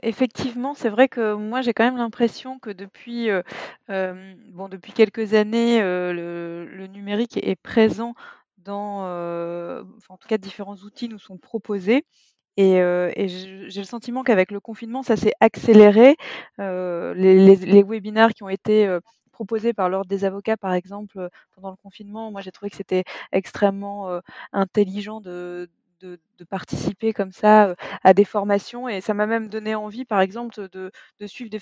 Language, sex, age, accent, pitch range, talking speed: French, female, 20-39, French, 190-230 Hz, 175 wpm